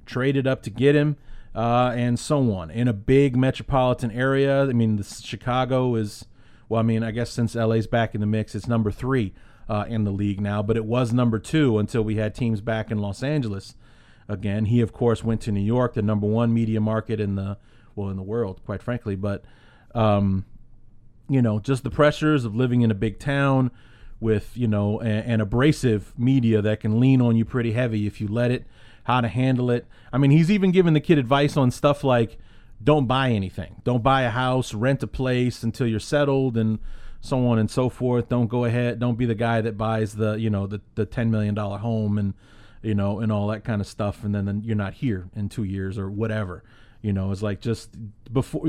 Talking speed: 220 wpm